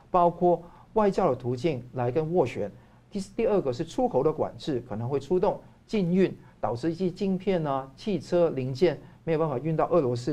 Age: 50-69